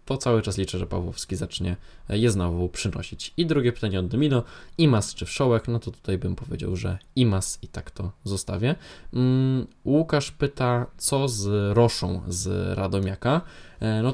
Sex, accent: male, native